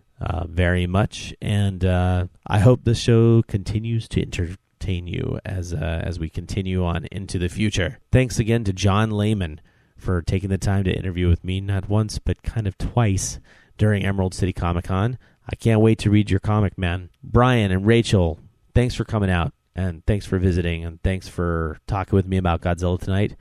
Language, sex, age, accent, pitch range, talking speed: English, male, 30-49, American, 95-115 Hz, 190 wpm